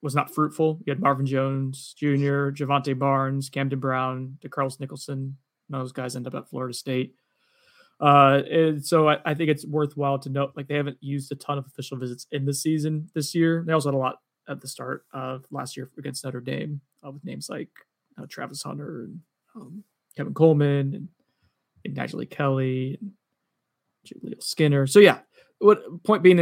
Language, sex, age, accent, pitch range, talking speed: English, male, 20-39, American, 130-150 Hz, 185 wpm